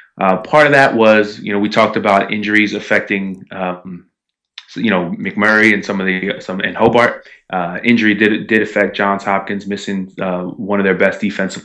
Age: 20-39